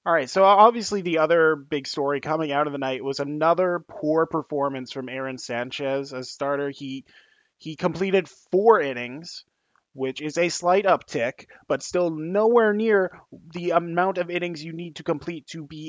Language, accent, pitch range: English, American, 140-175 Hz